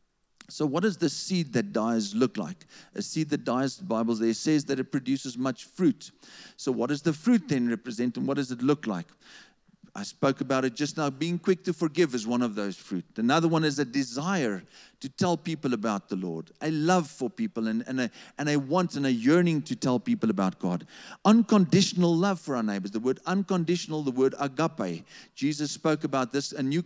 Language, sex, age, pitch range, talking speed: English, male, 50-69, 130-185 Hz, 210 wpm